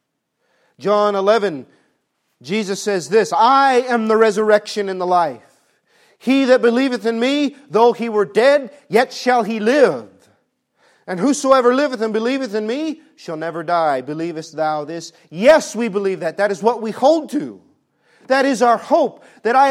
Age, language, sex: 40-59, English, male